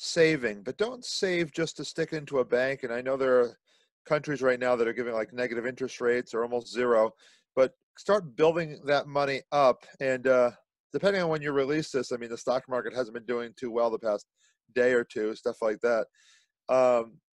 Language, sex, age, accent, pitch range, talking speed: English, male, 40-59, American, 125-150 Hz, 210 wpm